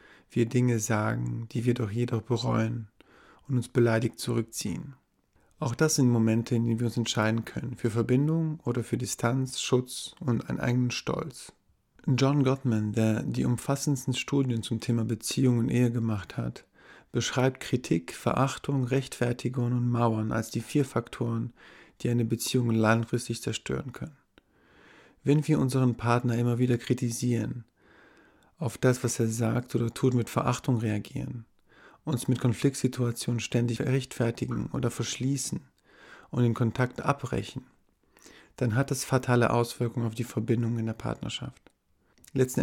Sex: male